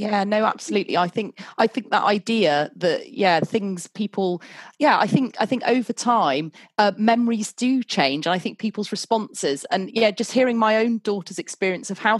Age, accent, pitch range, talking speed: 30-49, British, 175-210 Hz, 190 wpm